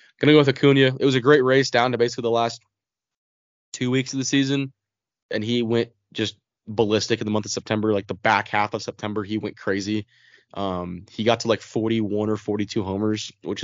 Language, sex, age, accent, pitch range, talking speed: English, male, 20-39, American, 100-115 Hz, 210 wpm